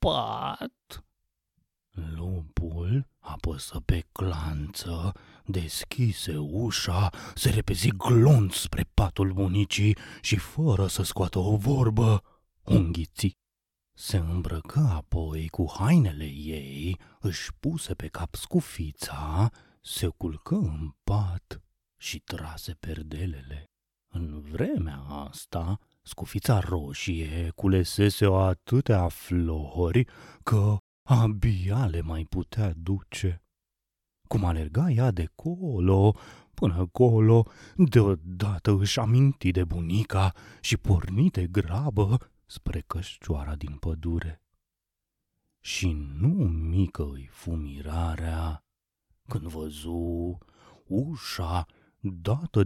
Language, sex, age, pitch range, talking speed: Romanian, male, 30-49, 85-110 Hz, 90 wpm